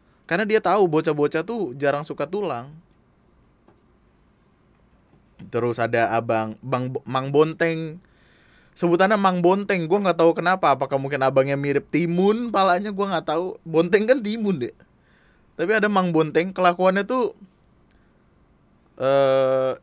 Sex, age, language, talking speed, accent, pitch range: male, 20-39, Indonesian, 125 wpm, native, 125-175 Hz